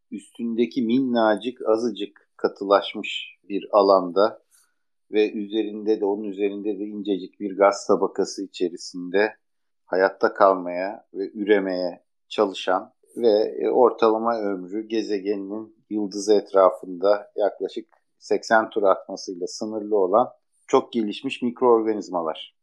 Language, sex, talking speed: Turkish, male, 100 wpm